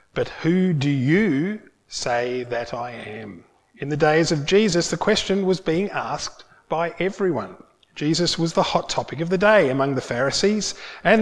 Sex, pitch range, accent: male, 150-195 Hz, Australian